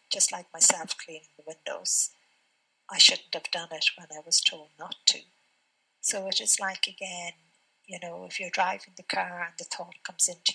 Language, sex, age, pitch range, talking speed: English, female, 50-69, 160-185 Hz, 195 wpm